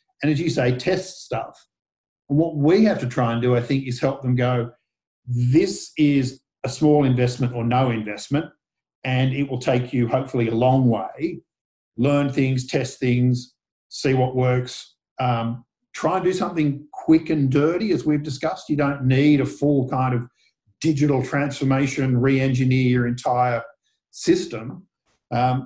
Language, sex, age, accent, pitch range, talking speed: English, male, 50-69, Australian, 125-145 Hz, 160 wpm